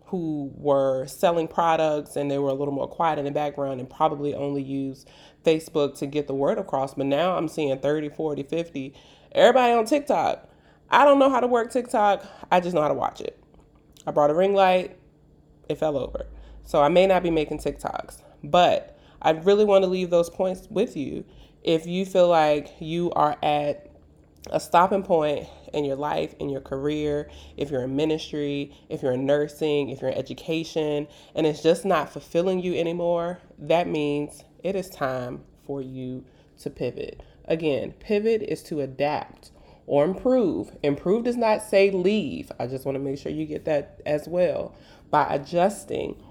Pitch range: 140-185 Hz